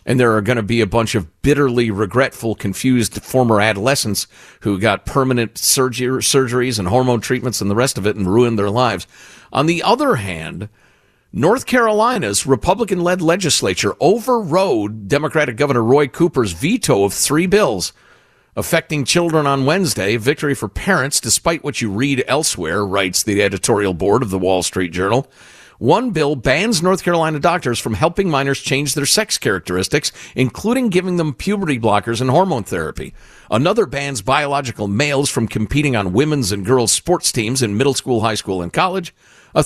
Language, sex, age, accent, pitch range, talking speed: English, male, 50-69, American, 110-155 Hz, 165 wpm